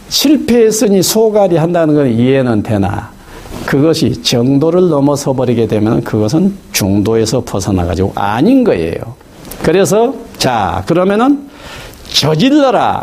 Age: 50-69